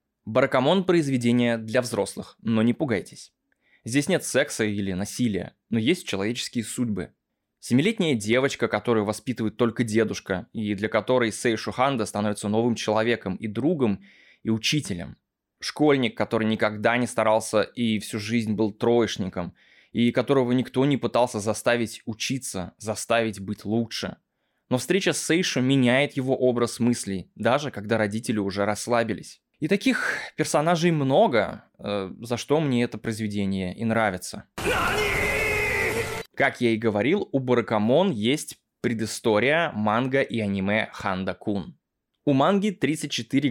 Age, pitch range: 20-39, 105-130 Hz